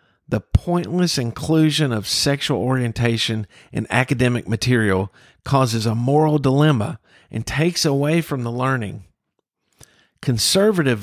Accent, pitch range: American, 110-145 Hz